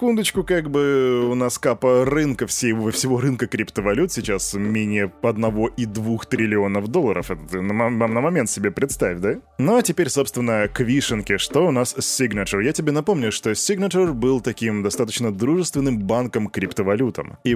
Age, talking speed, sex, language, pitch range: 20-39, 155 wpm, male, Russian, 105-145 Hz